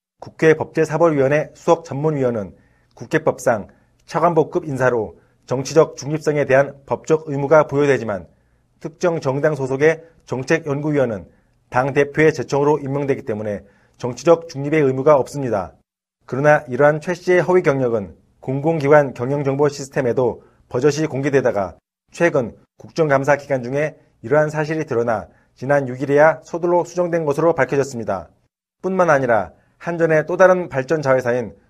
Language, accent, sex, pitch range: Korean, native, male, 130-160 Hz